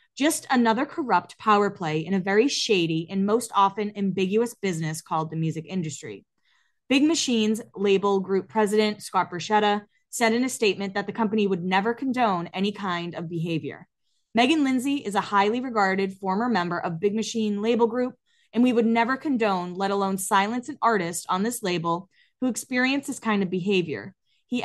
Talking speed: 175 wpm